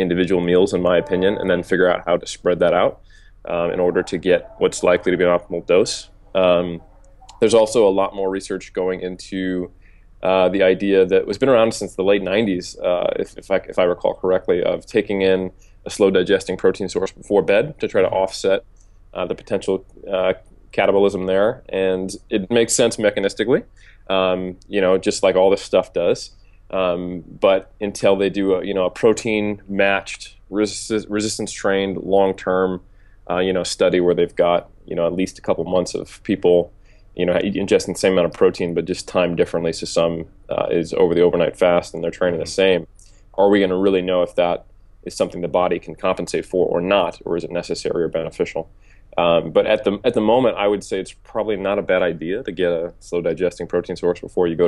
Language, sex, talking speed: English, male, 210 wpm